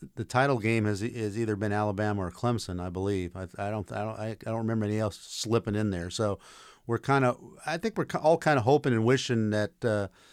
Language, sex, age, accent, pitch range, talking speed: English, male, 50-69, American, 110-145 Hz, 230 wpm